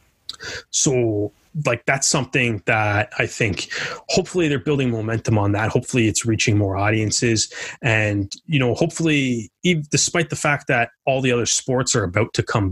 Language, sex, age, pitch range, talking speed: English, male, 20-39, 105-140 Hz, 165 wpm